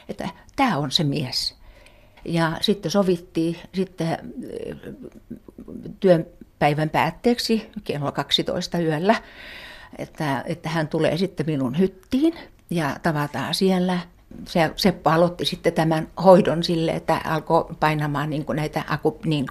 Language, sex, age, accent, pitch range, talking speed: Finnish, female, 60-79, native, 150-185 Hz, 110 wpm